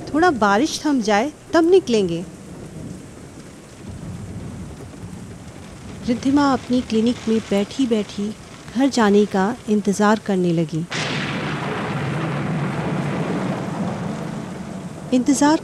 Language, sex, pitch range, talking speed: Hindi, female, 200-270 Hz, 70 wpm